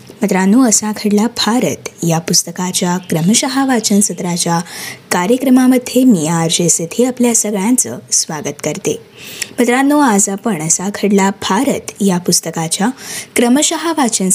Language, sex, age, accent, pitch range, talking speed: Marathi, female, 20-39, native, 190-255 Hz, 105 wpm